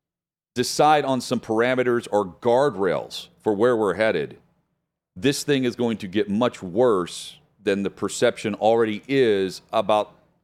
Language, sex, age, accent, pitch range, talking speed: English, male, 40-59, American, 95-125 Hz, 140 wpm